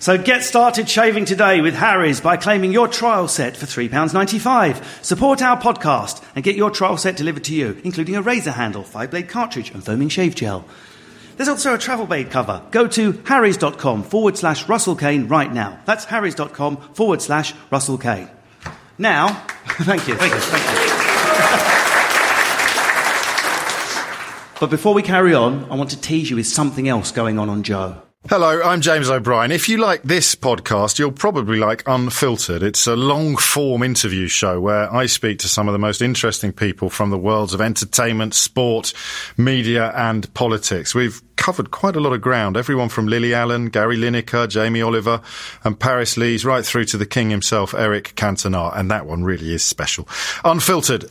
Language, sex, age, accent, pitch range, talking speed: English, male, 40-59, British, 110-165 Hz, 175 wpm